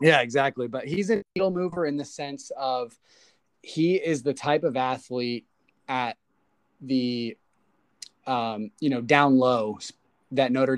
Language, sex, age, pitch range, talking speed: English, male, 20-39, 125-145 Hz, 145 wpm